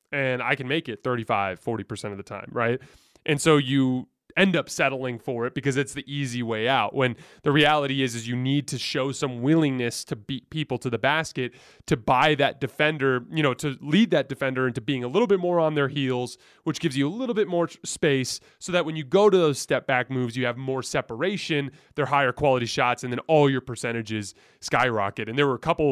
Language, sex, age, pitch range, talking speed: English, male, 20-39, 120-145 Hz, 225 wpm